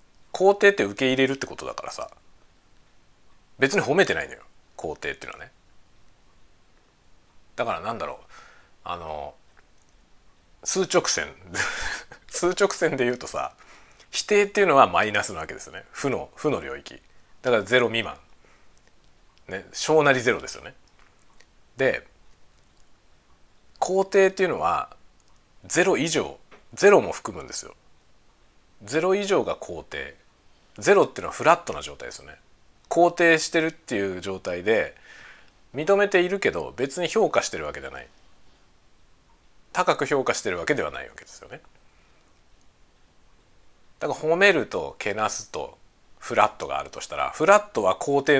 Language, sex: Japanese, male